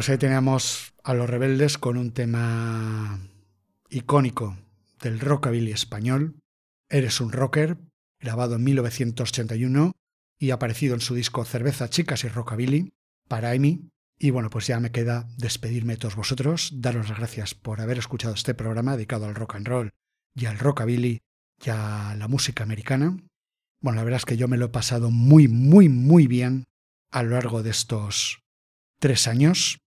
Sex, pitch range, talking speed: male, 115-135 Hz, 165 wpm